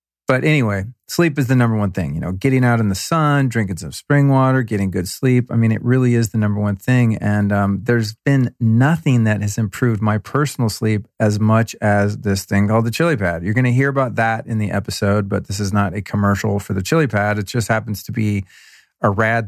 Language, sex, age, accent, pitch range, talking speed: English, male, 40-59, American, 105-125 Hz, 235 wpm